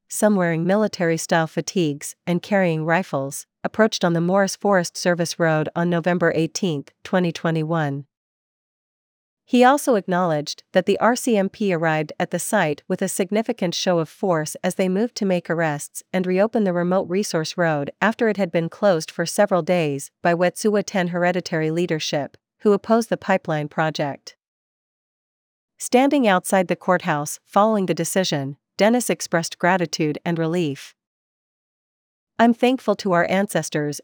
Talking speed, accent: 145 wpm, American